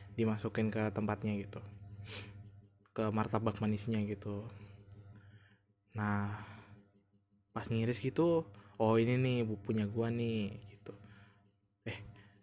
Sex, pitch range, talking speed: male, 100-130 Hz, 100 wpm